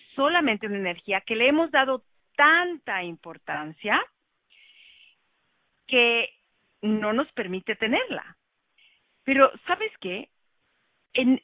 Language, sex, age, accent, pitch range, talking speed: English, female, 40-59, Mexican, 170-260 Hz, 95 wpm